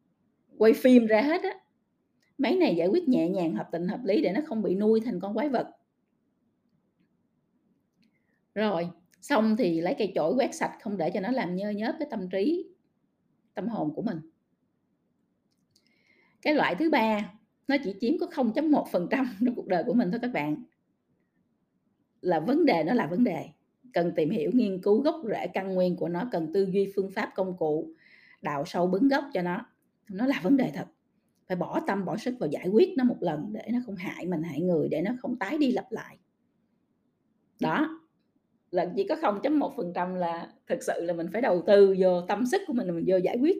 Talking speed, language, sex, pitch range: 200 wpm, Vietnamese, female, 185-270 Hz